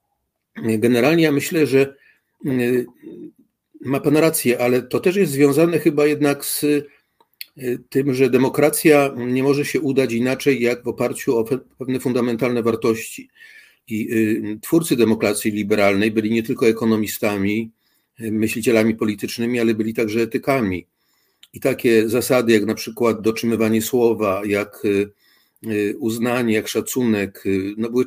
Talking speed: 120 wpm